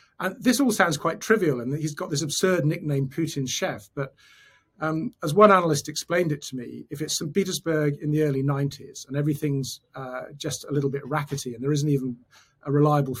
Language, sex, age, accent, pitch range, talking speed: English, male, 40-59, British, 135-160 Hz, 205 wpm